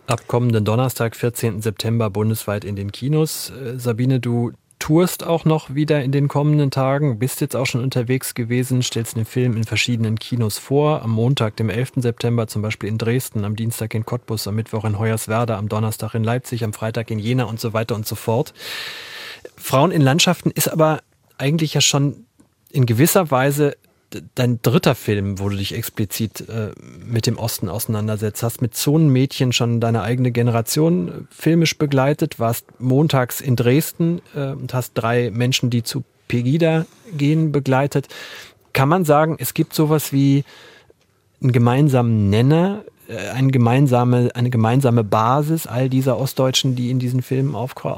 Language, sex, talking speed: German, male, 160 wpm